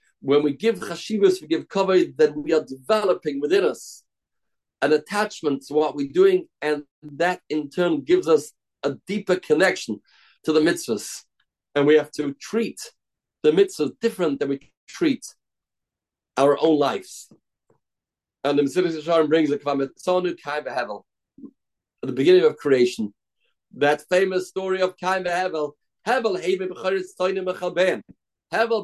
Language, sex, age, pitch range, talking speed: English, male, 50-69, 145-190 Hz, 135 wpm